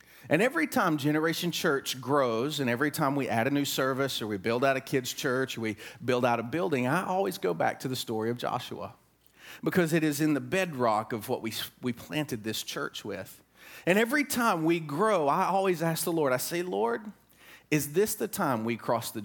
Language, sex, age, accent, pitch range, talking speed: English, male, 30-49, American, 135-190 Hz, 220 wpm